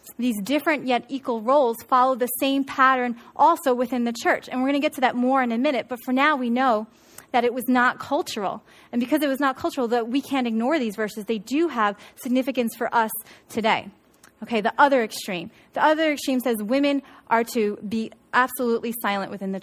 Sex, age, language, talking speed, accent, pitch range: female, 30-49, English, 210 wpm, American, 220-270 Hz